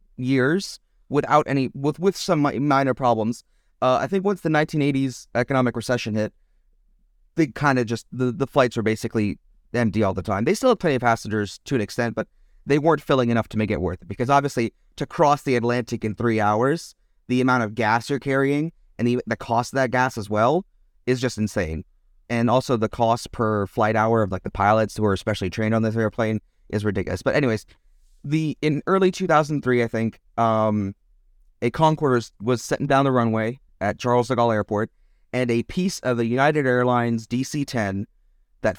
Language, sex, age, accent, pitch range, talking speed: English, male, 30-49, American, 110-135 Hz, 195 wpm